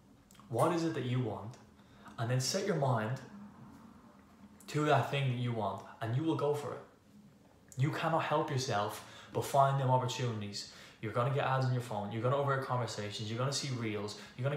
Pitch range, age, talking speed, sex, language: 110-135 Hz, 10-29, 210 wpm, male, English